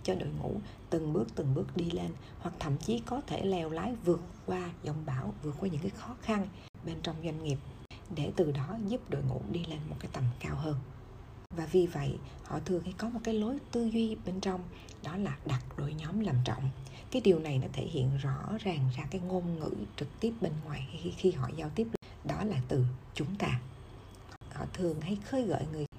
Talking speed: 220 wpm